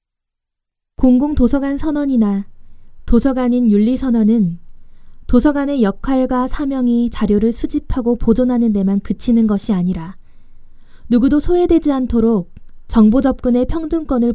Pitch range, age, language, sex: 205-265 Hz, 20-39, Korean, female